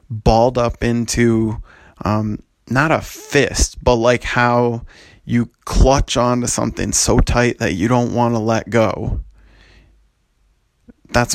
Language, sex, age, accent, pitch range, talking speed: English, male, 30-49, American, 105-120 Hz, 125 wpm